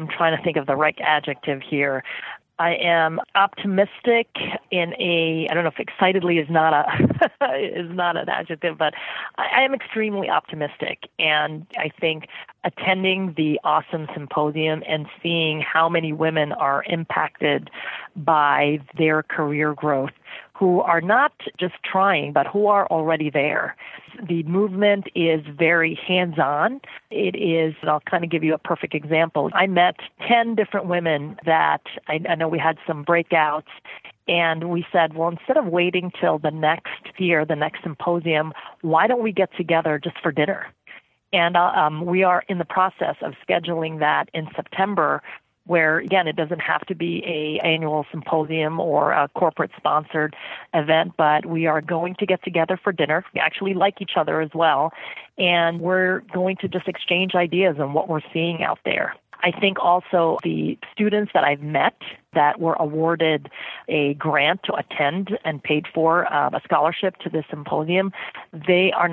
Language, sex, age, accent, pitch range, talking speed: English, female, 40-59, American, 155-180 Hz, 165 wpm